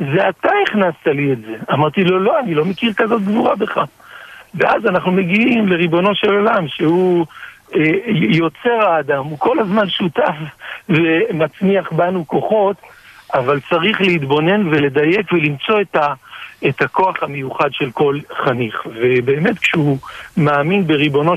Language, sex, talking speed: Hebrew, male, 140 wpm